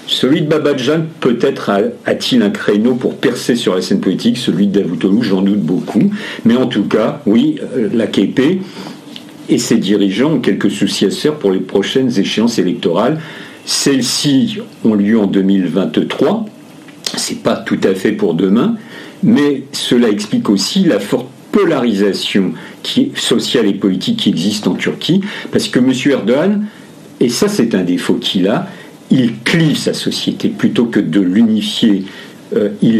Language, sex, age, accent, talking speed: French, male, 50-69, French, 155 wpm